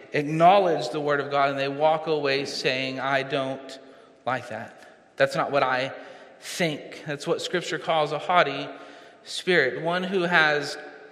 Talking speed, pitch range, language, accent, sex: 155 wpm, 140-170 Hz, English, American, male